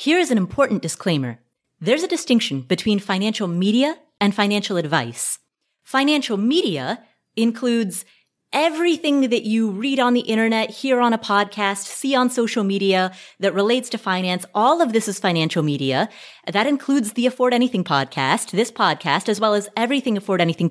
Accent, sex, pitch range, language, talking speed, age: American, female, 190-250 Hz, English, 160 wpm, 30-49